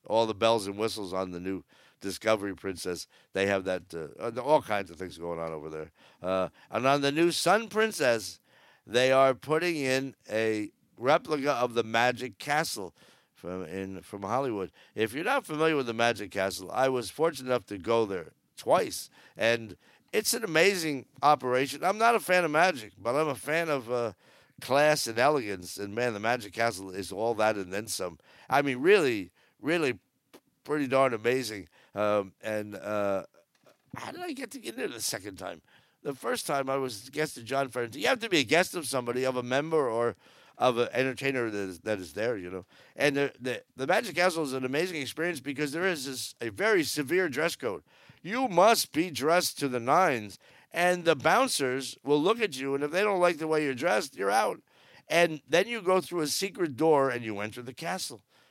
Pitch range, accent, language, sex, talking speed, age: 110-155 Hz, American, English, male, 200 wpm, 50-69